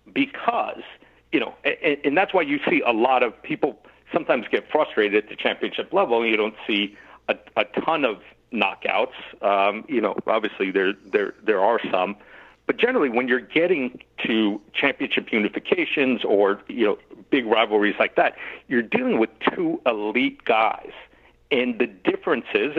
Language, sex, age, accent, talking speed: English, male, 60-79, American, 160 wpm